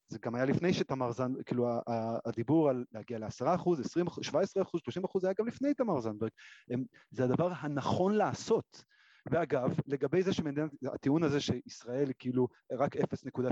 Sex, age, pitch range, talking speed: male, 30-49, 125-180 Hz, 180 wpm